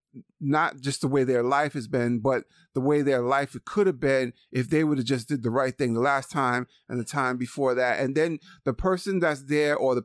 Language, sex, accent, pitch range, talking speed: English, male, American, 125-160 Hz, 245 wpm